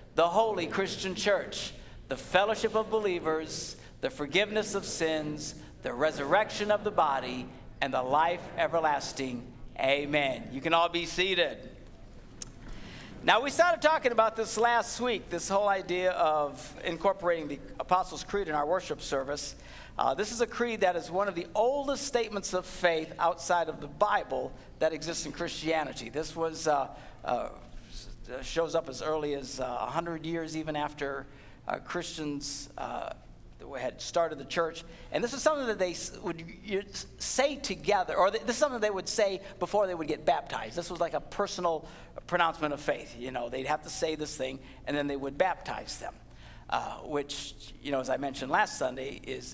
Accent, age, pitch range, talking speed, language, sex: American, 50-69, 140-190 Hz, 175 wpm, English, male